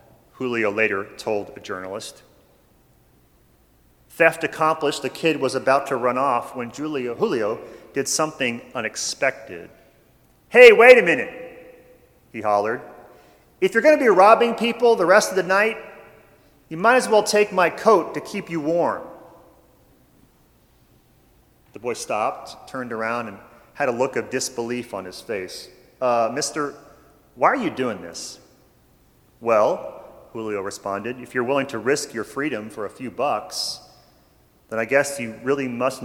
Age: 40-59